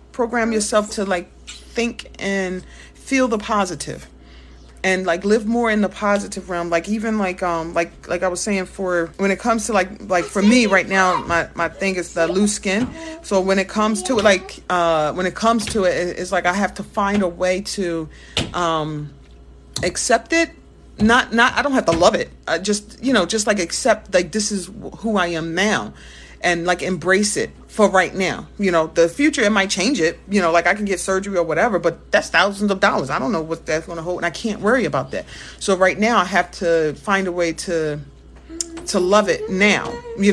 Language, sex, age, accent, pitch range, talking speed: English, female, 30-49, American, 170-210 Hz, 220 wpm